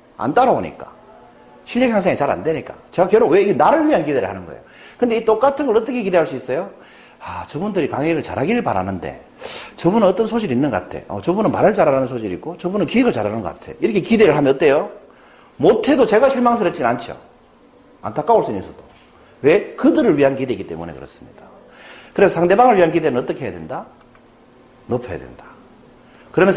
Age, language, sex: 40-59, Korean, male